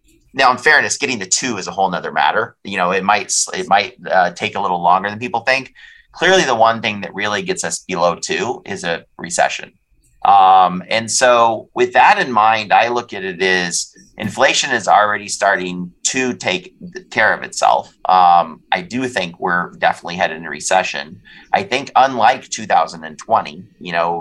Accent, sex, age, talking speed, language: American, male, 30-49, 185 wpm, English